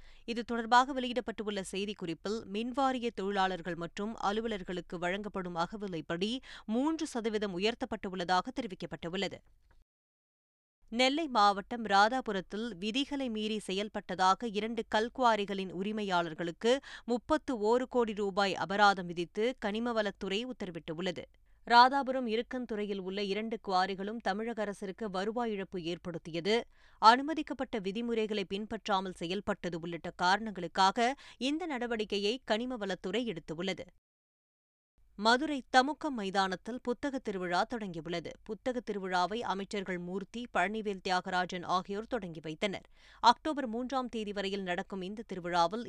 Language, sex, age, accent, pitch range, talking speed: Tamil, female, 20-39, native, 185-235 Hz, 95 wpm